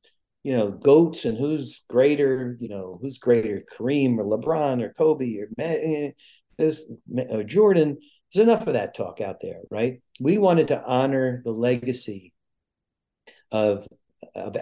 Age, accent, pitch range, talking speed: 50-69, American, 120-150 Hz, 140 wpm